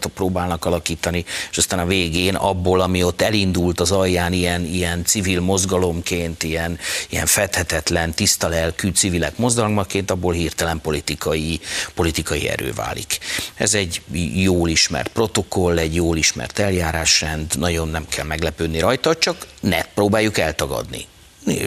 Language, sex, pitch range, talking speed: Hungarian, male, 85-110 Hz, 130 wpm